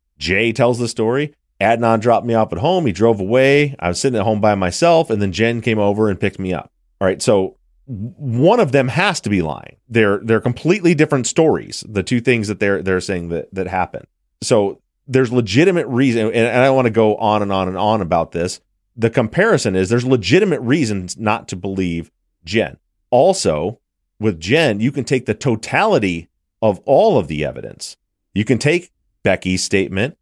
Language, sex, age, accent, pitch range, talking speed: English, male, 30-49, American, 95-130 Hz, 195 wpm